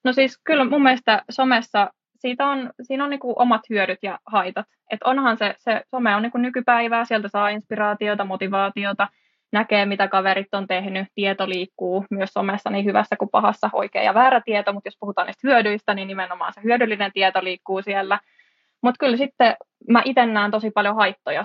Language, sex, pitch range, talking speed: Finnish, female, 195-230 Hz, 180 wpm